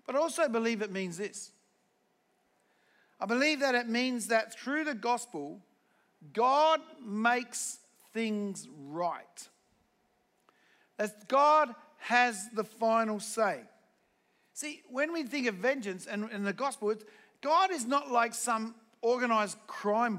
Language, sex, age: English, male, 50-69